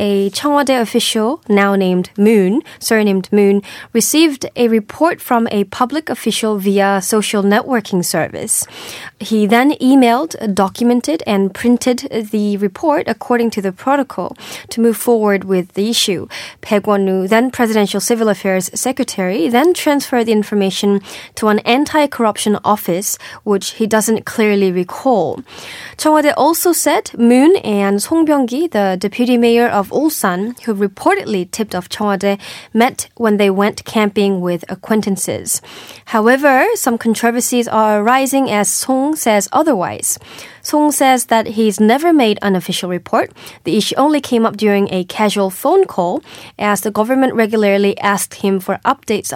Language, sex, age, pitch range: Korean, female, 20-39, 200-245 Hz